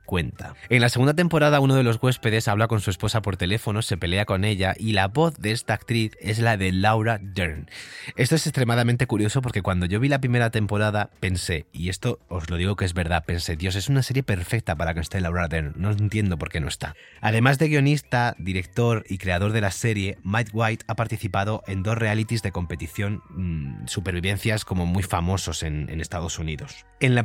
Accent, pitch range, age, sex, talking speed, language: Spanish, 95-120 Hz, 30-49, male, 210 wpm, Spanish